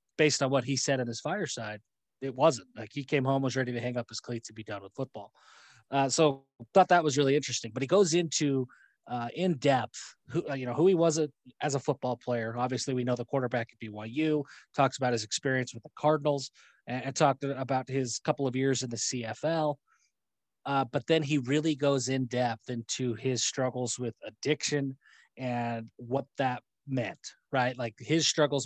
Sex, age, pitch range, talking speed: male, 20-39, 120-145 Hz, 200 wpm